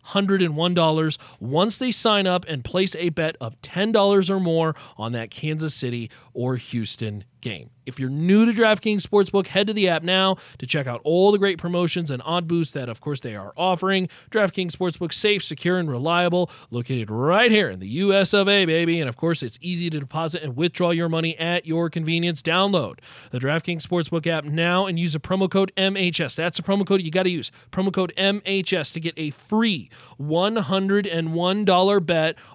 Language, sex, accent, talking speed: English, male, American, 190 wpm